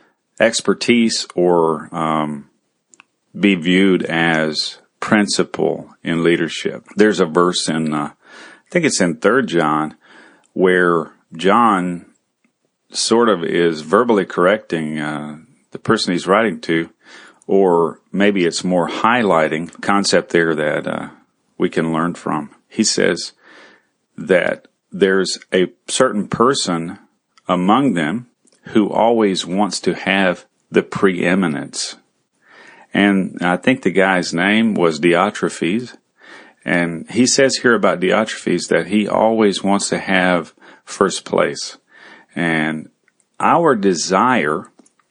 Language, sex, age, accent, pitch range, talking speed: English, male, 40-59, American, 80-100 Hz, 115 wpm